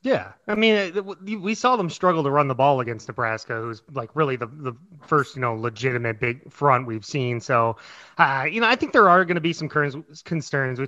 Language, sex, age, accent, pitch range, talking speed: English, male, 30-49, American, 125-155 Hz, 220 wpm